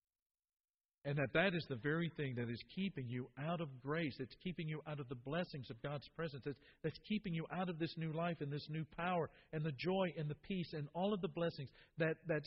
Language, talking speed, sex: English, 240 wpm, male